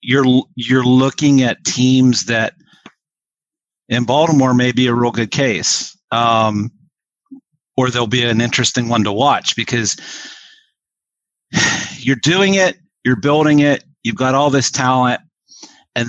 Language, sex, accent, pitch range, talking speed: English, male, American, 115-135 Hz, 140 wpm